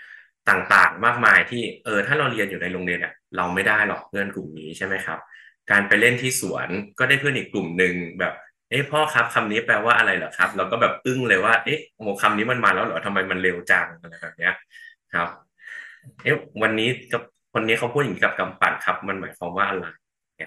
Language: Thai